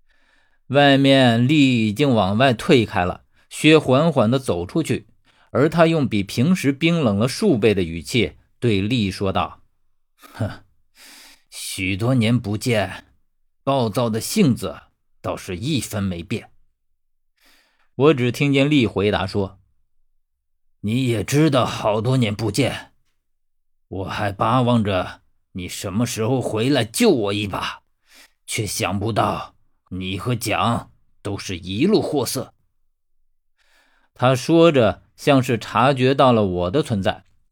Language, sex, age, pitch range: Chinese, male, 50-69, 95-135 Hz